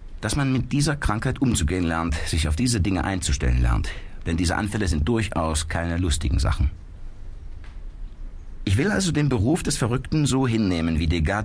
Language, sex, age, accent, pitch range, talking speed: German, male, 50-69, German, 80-105 Hz, 170 wpm